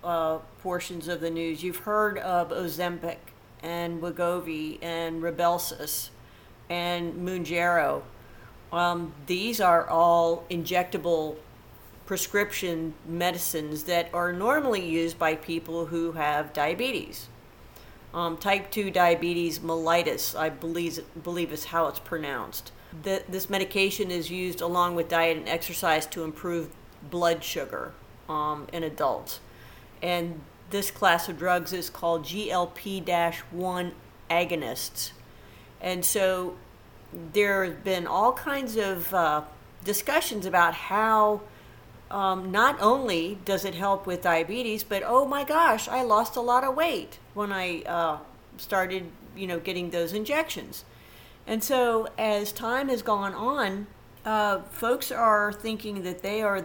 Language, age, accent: English, 40-59, American